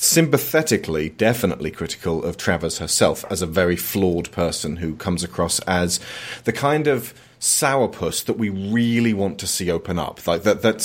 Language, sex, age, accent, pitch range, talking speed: English, male, 30-49, British, 90-115 Hz, 165 wpm